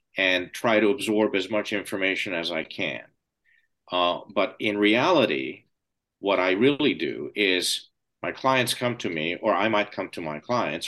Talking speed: 170 wpm